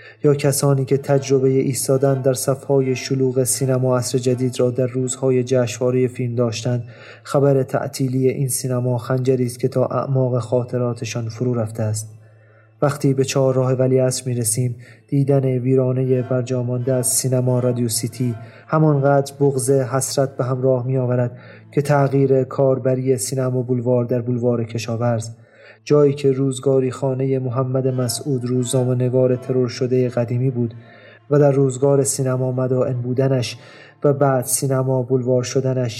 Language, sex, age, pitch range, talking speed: Persian, male, 30-49, 125-135 Hz, 135 wpm